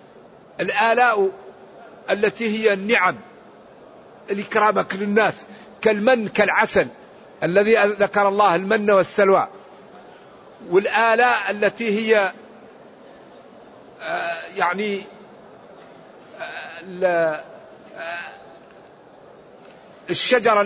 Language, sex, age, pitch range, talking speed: Arabic, male, 50-69, 185-215 Hz, 50 wpm